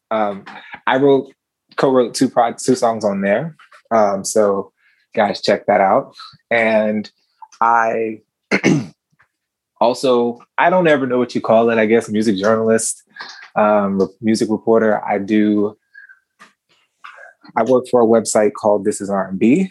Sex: male